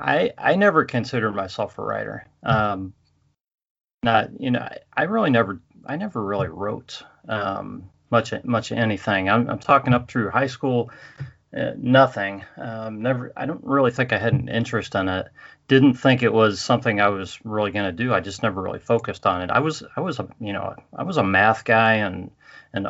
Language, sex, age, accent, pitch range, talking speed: English, male, 30-49, American, 100-125 Hz, 200 wpm